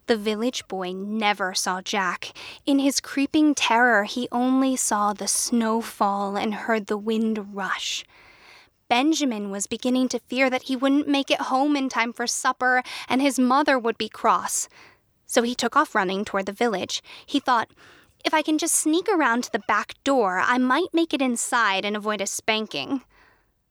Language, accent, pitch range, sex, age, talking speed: English, American, 215-270 Hz, female, 10-29, 180 wpm